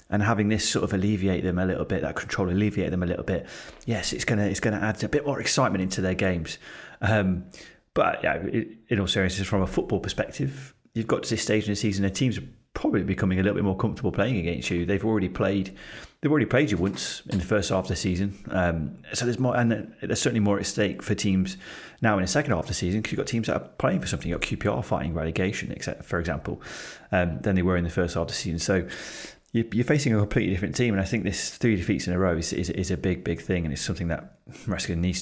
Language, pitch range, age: English, 90-105 Hz, 30-49